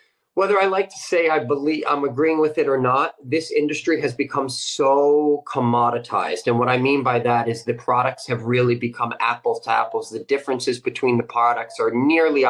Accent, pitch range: American, 125-170 Hz